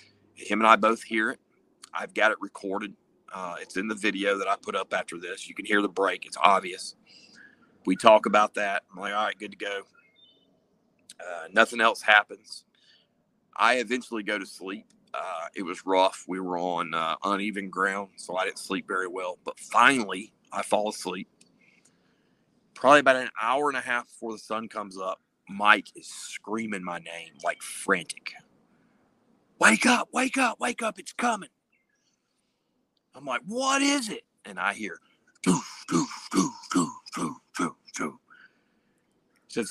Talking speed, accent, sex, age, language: 170 wpm, American, male, 40-59, English